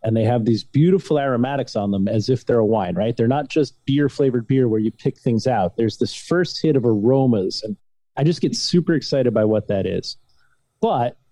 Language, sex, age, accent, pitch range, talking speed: English, male, 30-49, American, 115-145 Hz, 215 wpm